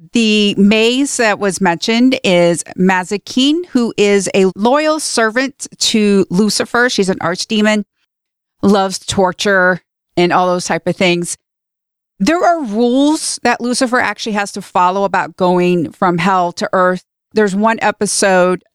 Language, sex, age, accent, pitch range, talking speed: English, female, 40-59, American, 180-220 Hz, 140 wpm